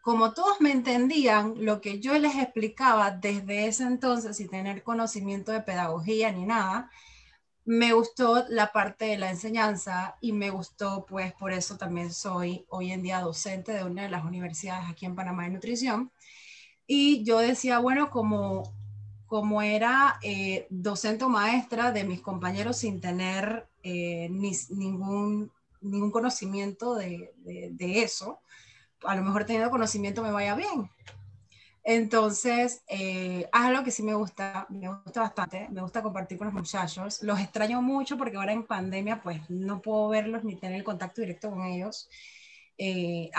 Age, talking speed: 30-49, 160 wpm